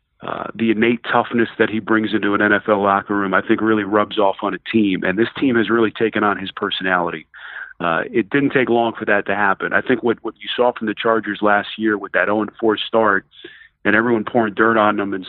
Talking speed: 235 wpm